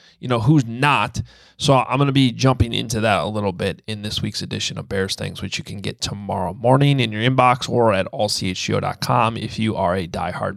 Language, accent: English, American